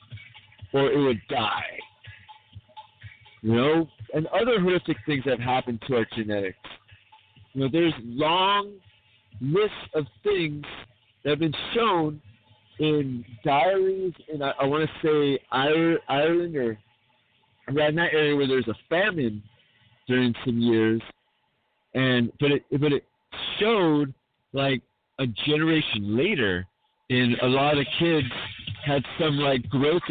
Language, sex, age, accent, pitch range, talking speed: English, male, 40-59, American, 115-150 Hz, 135 wpm